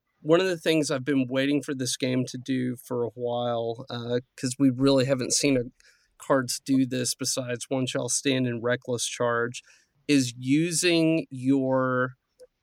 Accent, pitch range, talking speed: American, 125-145 Hz, 165 wpm